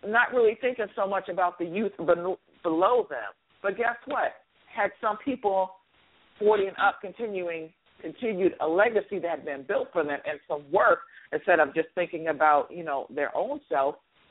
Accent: American